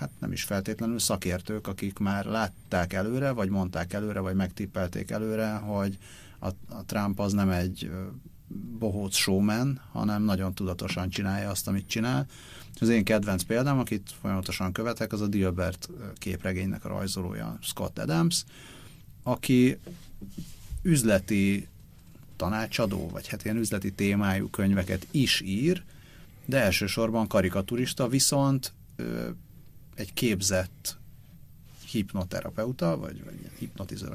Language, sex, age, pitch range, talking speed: Hungarian, male, 30-49, 95-120 Hz, 115 wpm